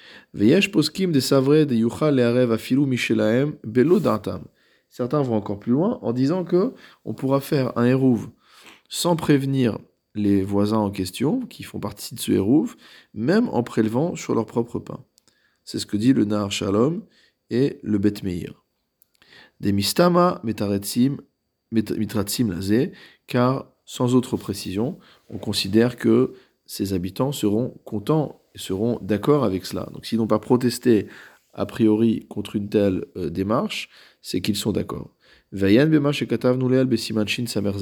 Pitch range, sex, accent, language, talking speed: 105-130 Hz, male, French, French, 140 wpm